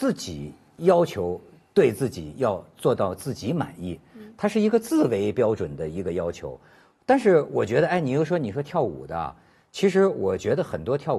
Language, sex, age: Chinese, male, 50-69